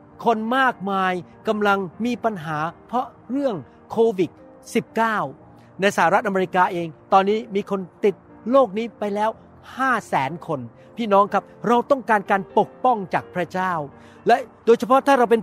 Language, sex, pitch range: Thai, male, 180-235 Hz